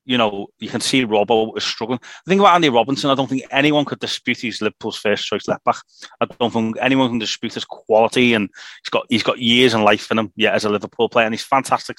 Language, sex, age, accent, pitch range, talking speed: English, male, 30-49, British, 110-135 Hz, 245 wpm